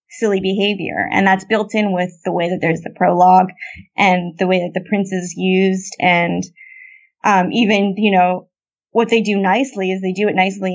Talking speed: 195 wpm